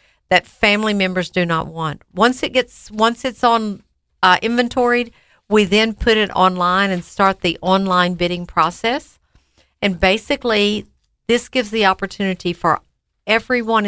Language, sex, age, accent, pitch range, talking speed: English, female, 50-69, American, 175-220 Hz, 145 wpm